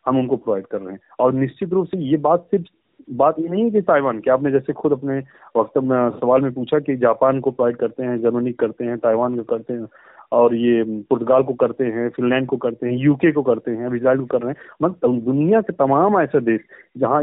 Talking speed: 235 wpm